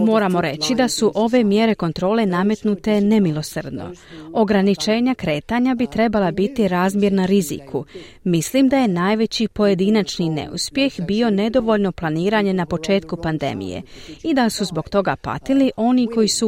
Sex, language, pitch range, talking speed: female, Croatian, 180-230 Hz, 140 wpm